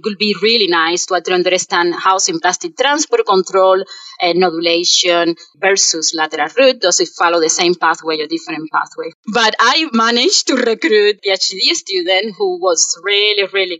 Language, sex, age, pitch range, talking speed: English, female, 30-49, 190-270 Hz, 155 wpm